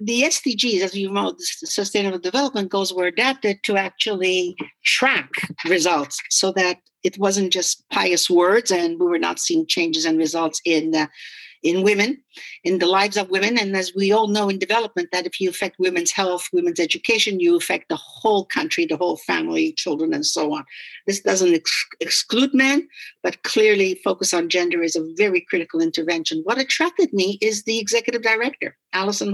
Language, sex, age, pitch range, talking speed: English, female, 50-69, 185-250 Hz, 180 wpm